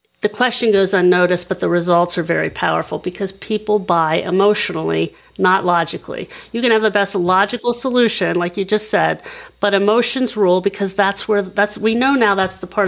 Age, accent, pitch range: 50-69, American, 190-240 Hz